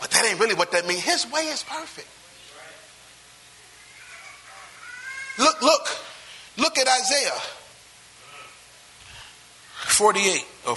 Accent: American